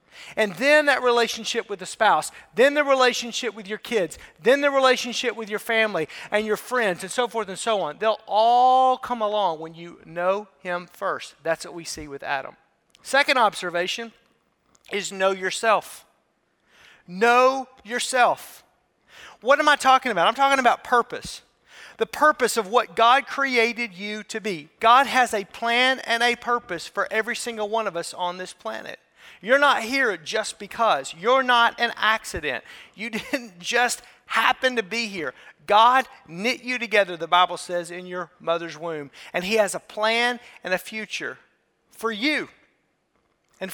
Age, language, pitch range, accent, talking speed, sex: 40-59, English, 200-245 Hz, American, 165 wpm, male